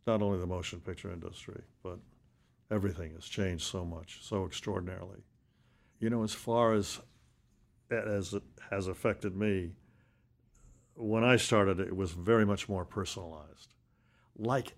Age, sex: 60-79, male